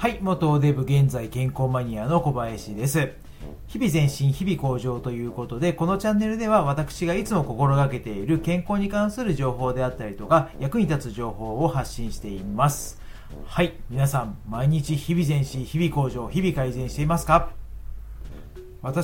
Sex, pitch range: male, 120-170 Hz